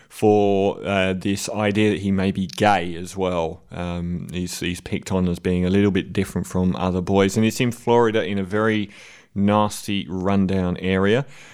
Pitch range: 95-115 Hz